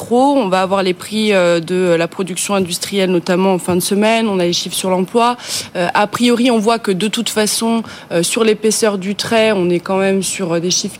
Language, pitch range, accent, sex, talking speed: French, 185-225 Hz, French, female, 215 wpm